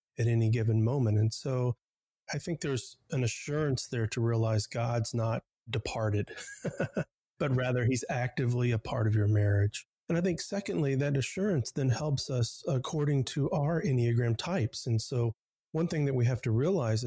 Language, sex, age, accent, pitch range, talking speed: English, male, 30-49, American, 115-135 Hz, 170 wpm